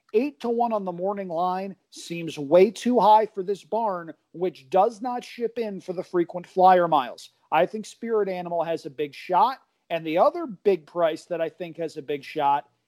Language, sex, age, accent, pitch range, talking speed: English, male, 40-59, American, 170-225 Hz, 205 wpm